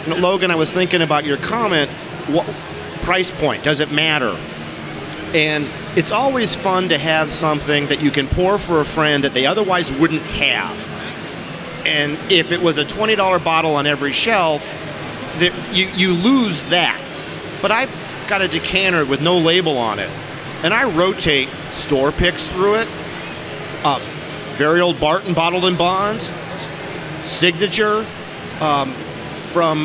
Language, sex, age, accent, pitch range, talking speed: English, male, 40-59, American, 150-200 Hz, 145 wpm